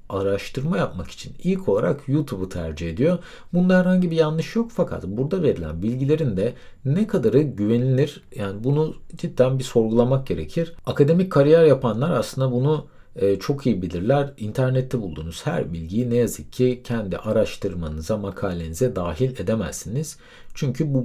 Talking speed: 140 wpm